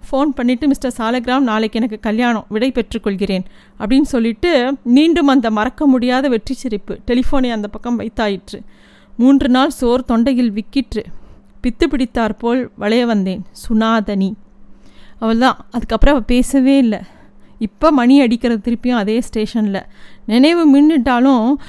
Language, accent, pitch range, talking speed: Tamil, native, 220-260 Hz, 125 wpm